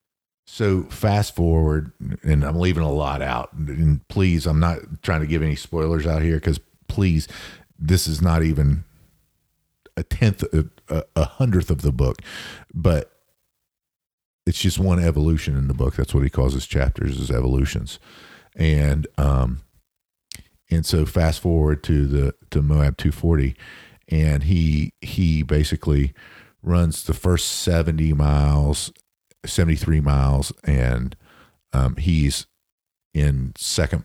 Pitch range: 70-85 Hz